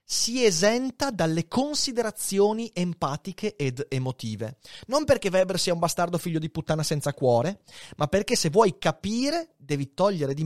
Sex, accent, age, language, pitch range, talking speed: male, native, 30-49, Italian, 125-200 Hz, 150 wpm